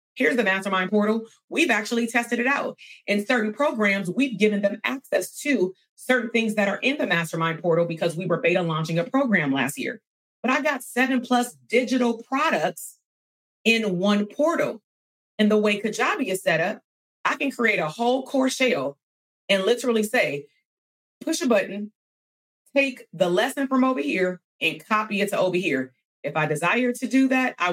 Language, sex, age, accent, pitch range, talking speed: English, female, 30-49, American, 175-260 Hz, 180 wpm